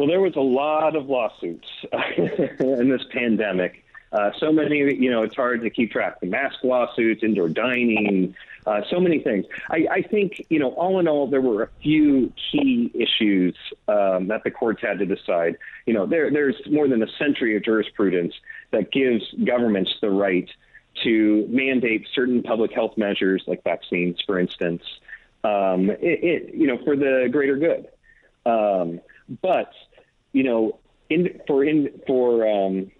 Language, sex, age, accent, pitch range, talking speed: English, male, 40-59, American, 110-155 Hz, 170 wpm